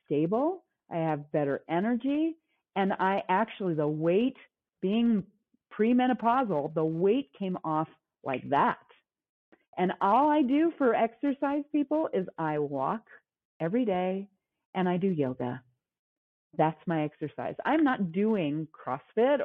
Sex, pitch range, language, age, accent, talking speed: female, 155-225 Hz, English, 40-59, American, 125 wpm